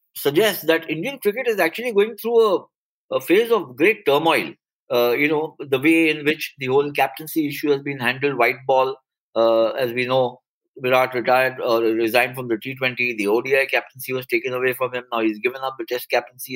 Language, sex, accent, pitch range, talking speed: English, male, Indian, 125-170 Hz, 205 wpm